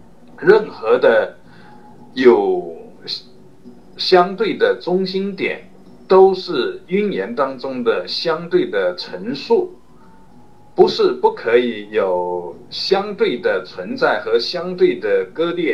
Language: Chinese